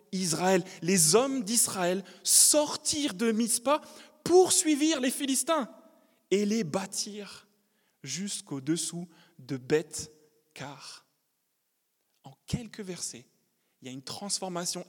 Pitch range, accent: 135-190 Hz, French